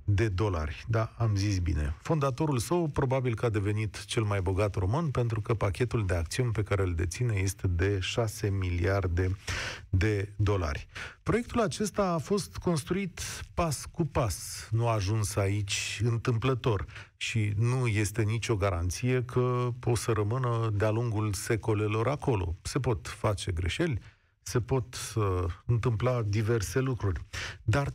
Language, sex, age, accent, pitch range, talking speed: Romanian, male, 40-59, native, 105-150 Hz, 145 wpm